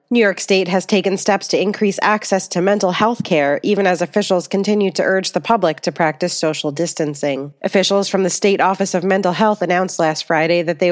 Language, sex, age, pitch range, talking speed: English, female, 30-49, 170-200 Hz, 210 wpm